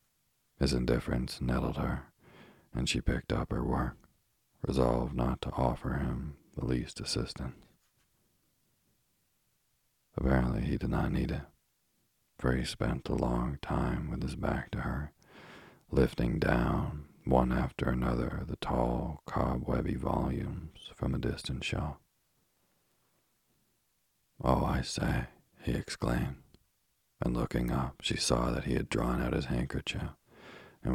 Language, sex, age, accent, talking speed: English, male, 40-59, American, 130 wpm